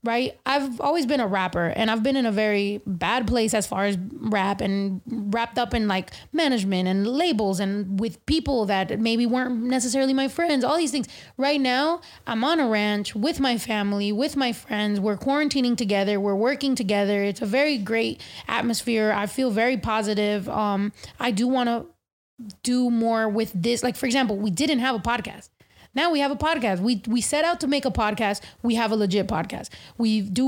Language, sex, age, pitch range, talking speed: English, female, 20-39, 205-250 Hz, 200 wpm